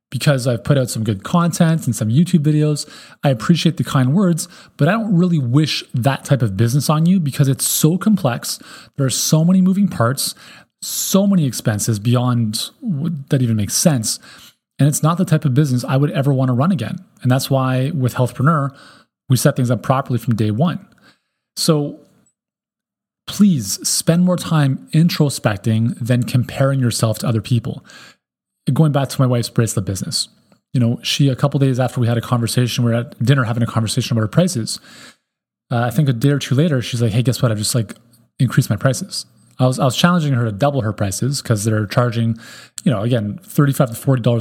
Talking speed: 200 wpm